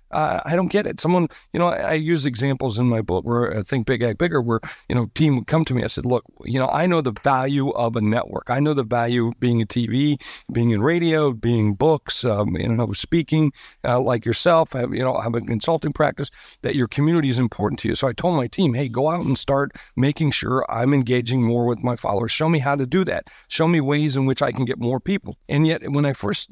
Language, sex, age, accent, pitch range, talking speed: English, male, 60-79, American, 120-165 Hz, 260 wpm